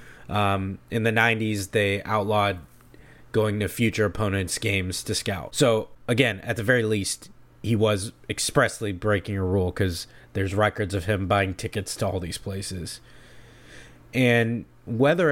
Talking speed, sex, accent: 150 wpm, male, American